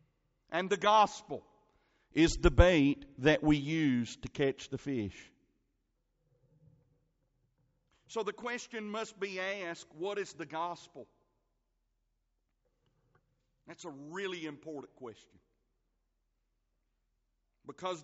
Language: English